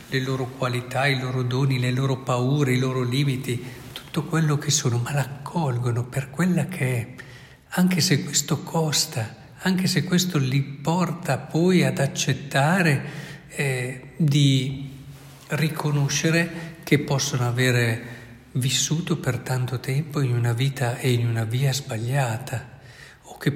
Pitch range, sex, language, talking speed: 125-150 Hz, male, Italian, 135 wpm